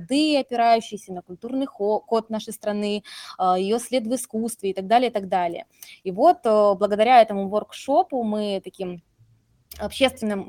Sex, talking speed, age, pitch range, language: female, 135 wpm, 20-39, 195-235 Hz, Russian